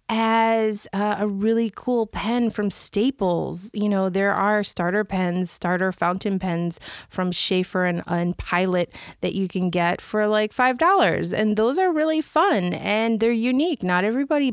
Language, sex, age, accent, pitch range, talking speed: English, female, 30-49, American, 190-235 Hz, 165 wpm